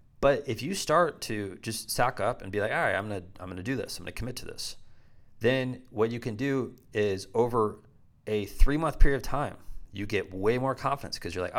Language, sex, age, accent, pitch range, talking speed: English, male, 30-49, American, 100-130 Hz, 235 wpm